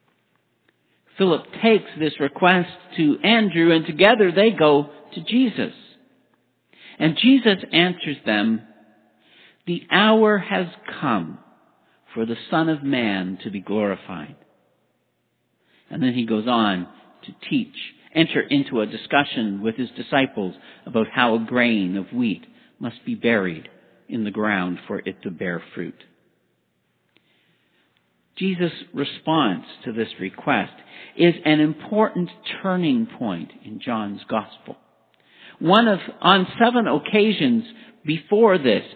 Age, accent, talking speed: 60-79, American, 120 wpm